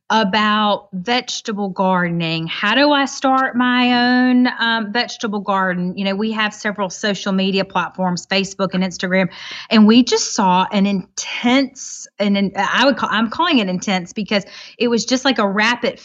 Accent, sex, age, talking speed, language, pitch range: American, female, 30-49, 170 wpm, English, 200-255 Hz